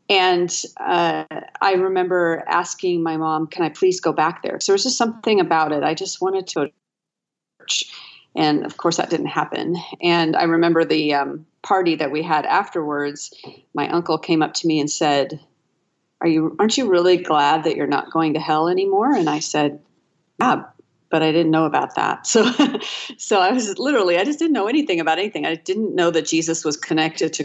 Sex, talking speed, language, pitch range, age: female, 200 wpm, English, 155-185 Hz, 40-59